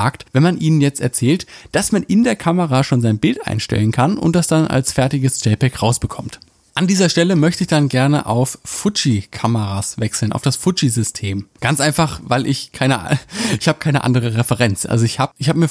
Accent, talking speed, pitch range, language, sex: German, 190 wpm, 120-155 Hz, German, male